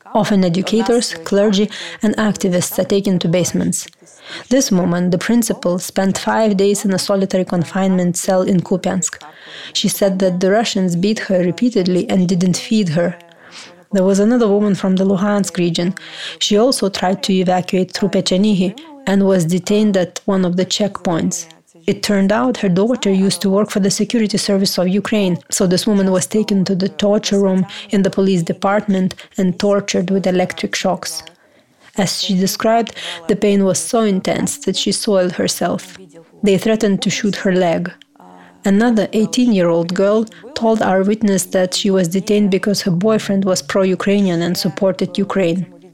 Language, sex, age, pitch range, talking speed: Ukrainian, female, 30-49, 180-205 Hz, 165 wpm